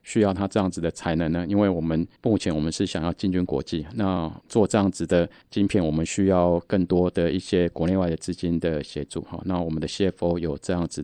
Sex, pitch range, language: male, 85-100 Hz, Chinese